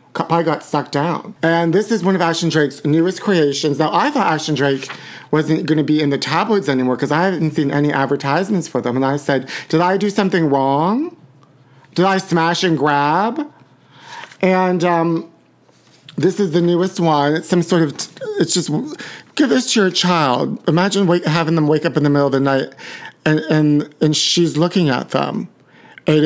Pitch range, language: 150-185 Hz, English